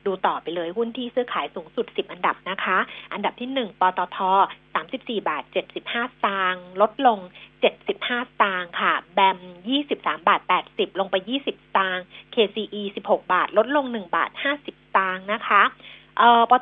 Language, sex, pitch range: Thai, female, 190-250 Hz